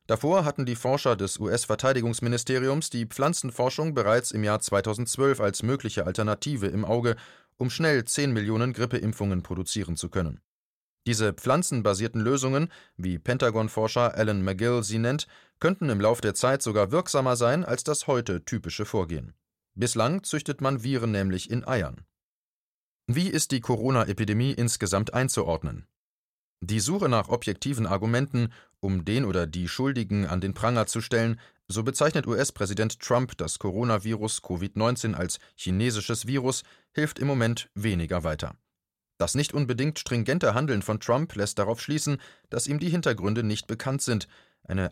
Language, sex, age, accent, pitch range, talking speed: German, male, 30-49, German, 105-130 Hz, 145 wpm